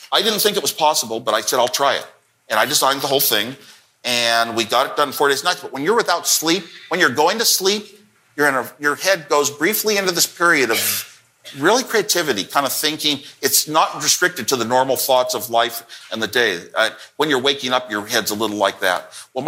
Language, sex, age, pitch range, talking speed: English, male, 50-69, 130-190 Hz, 235 wpm